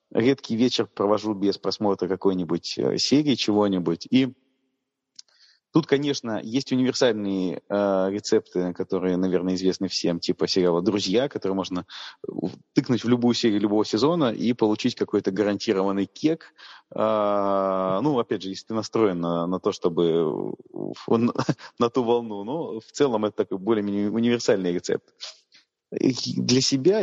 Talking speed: 130 wpm